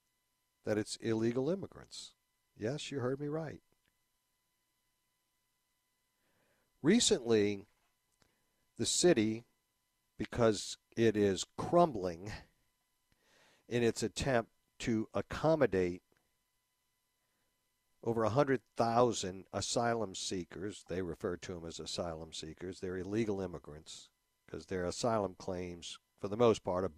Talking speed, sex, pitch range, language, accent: 100 wpm, male, 100-120 Hz, English, American